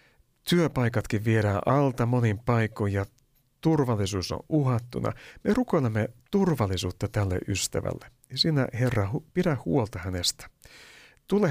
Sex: male